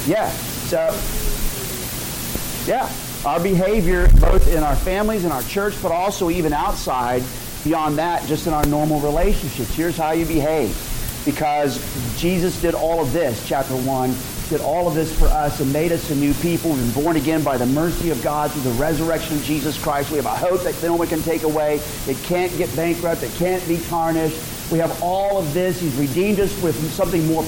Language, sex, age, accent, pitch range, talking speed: English, male, 50-69, American, 145-180 Hz, 200 wpm